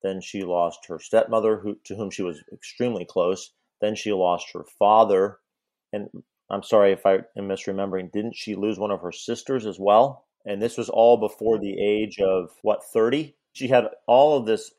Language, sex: English, male